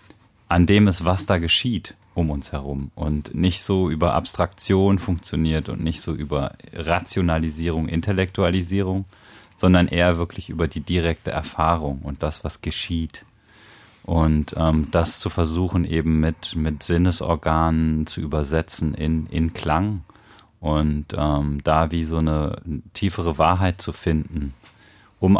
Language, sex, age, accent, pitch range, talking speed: German, male, 30-49, German, 75-95 Hz, 135 wpm